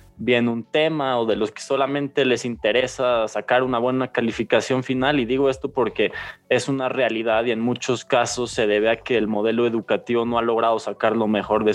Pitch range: 110-125 Hz